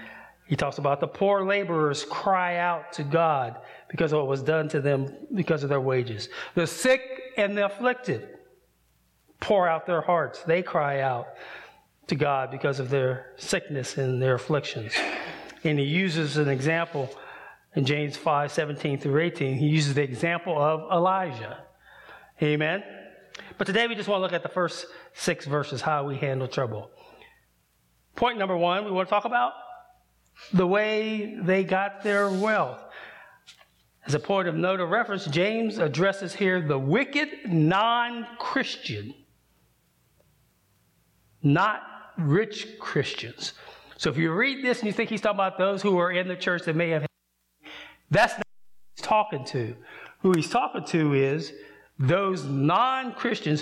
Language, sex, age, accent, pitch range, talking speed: English, male, 30-49, American, 145-200 Hz, 155 wpm